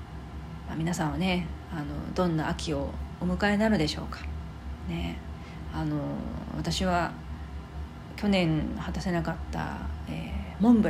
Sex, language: female, Japanese